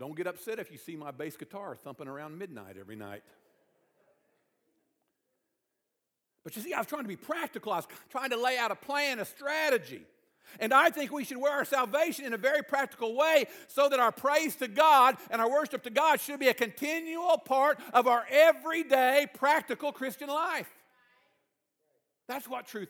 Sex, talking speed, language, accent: male, 185 wpm, English, American